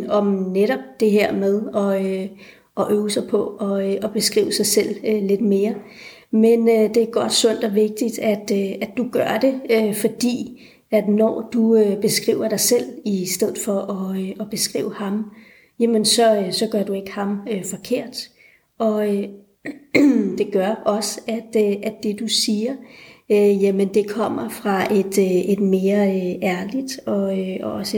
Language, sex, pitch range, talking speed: Danish, female, 200-225 Hz, 130 wpm